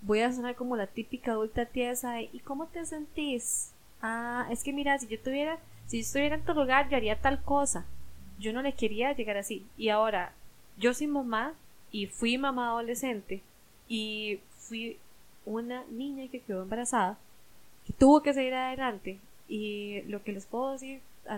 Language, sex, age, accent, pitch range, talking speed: Spanish, female, 10-29, Colombian, 205-245 Hz, 180 wpm